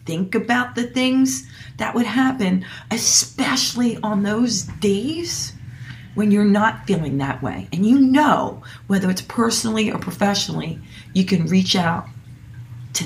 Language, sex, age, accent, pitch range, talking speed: English, female, 40-59, American, 125-195 Hz, 140 wpm